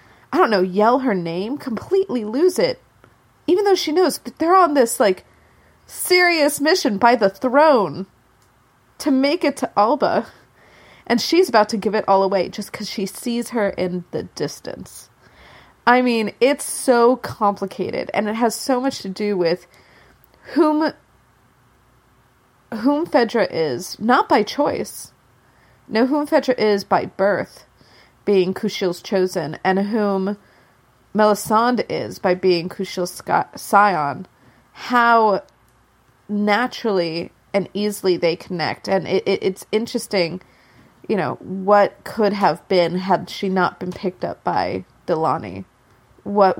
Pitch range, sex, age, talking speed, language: 185-245 Hz, female, 30-49, 140 wpm, English